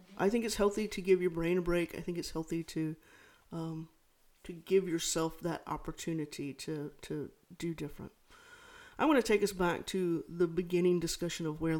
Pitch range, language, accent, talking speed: 160-195 Hz, English, American, 190 wpm